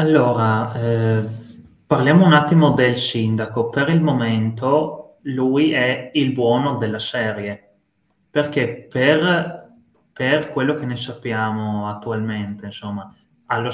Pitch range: 110-130 Hz